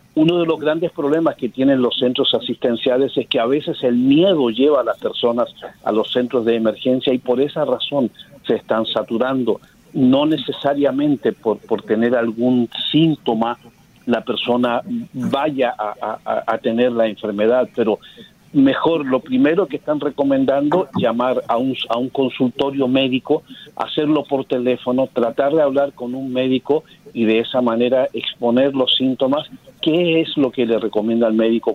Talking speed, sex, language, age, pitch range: 160 wpm, male, Spanish, 50-69, 115-150 Hz